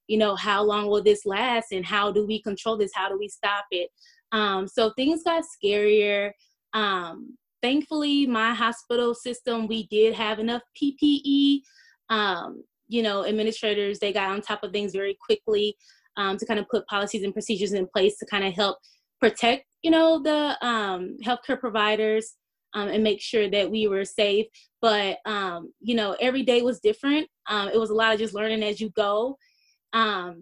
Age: 20-39